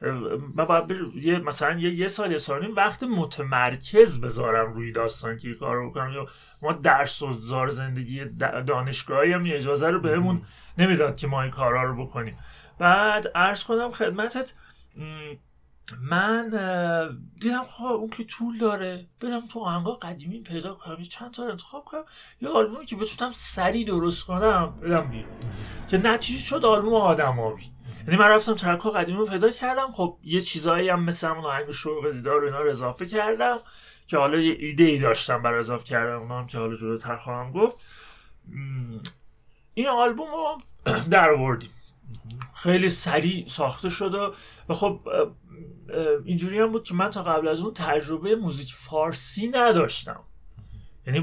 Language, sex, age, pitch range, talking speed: Persian, male, 30-49, 135-195 Hz, 150 wpm